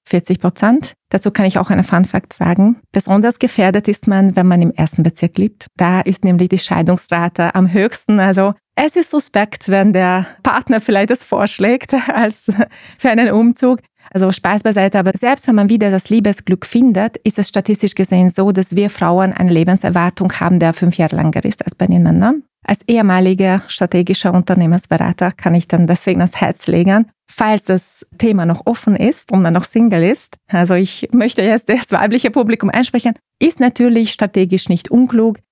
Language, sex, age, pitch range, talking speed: German, female, 20-39, 180-220 Hz, 180 wpm